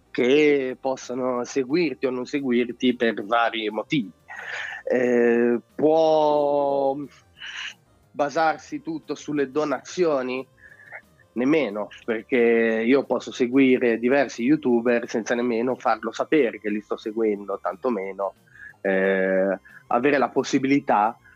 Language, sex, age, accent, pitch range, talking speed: Italian, male, 20-39, native, 110-140 Hz, 100 wpm